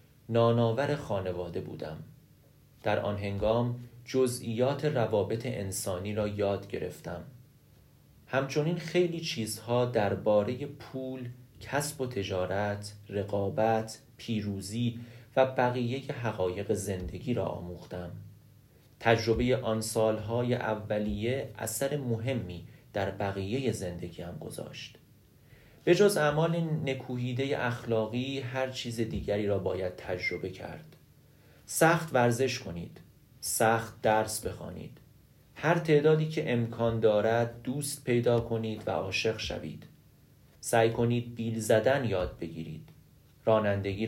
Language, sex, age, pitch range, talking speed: Persian, male, 30-49, 100-130 Hz, 105 wpm